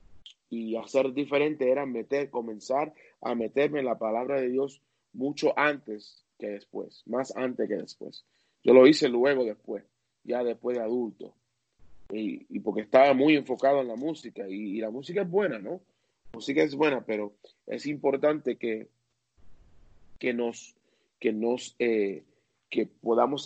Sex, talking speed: male, 155 wpm